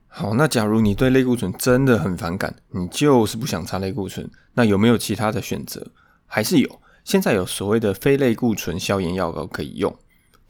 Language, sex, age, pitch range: Chinese, male, 20-39, 100-130 Hz